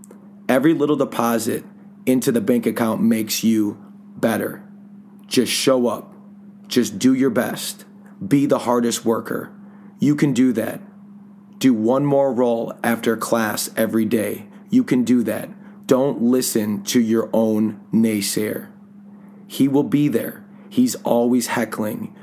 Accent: American